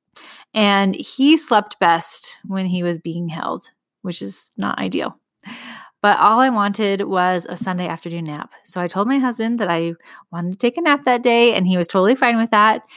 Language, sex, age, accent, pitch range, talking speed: English, female, 20-39, American, 180-235 Hz, 200 wpm